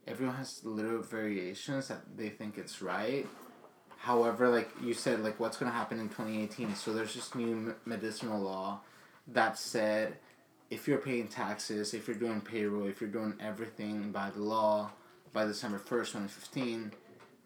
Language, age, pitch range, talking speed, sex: English, 20-39, 105-120 Hz, 160 wpm, male